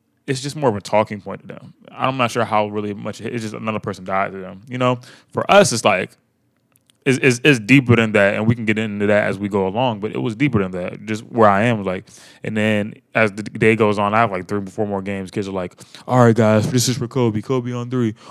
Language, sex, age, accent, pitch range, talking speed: English, male, 20-39, American, 100-120 Hz, 270 wpm